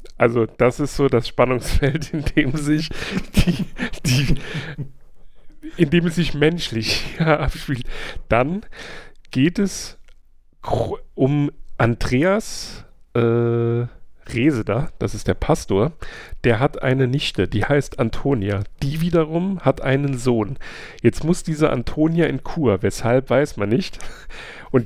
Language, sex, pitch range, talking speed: German, male, 115-150 Hz, 125 wpm